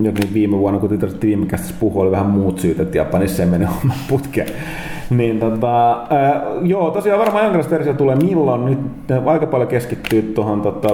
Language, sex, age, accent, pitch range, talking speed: Finnish, male, 30-49, native, 100-145 Hz, 175 wpm